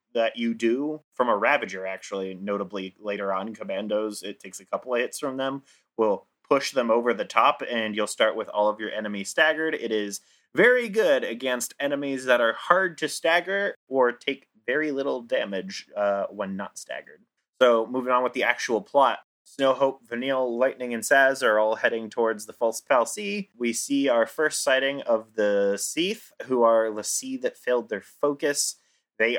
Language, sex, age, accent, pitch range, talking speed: English, male, 30-49, American, 110-135 Hz, 190 wpm